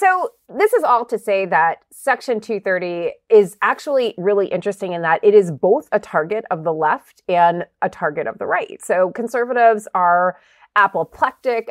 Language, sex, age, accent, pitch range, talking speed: English, female, 30-49, American, 160-215 Hz, 170 wpm